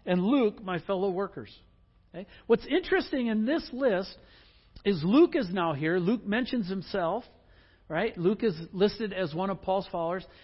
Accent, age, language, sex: American, 60-79, English, male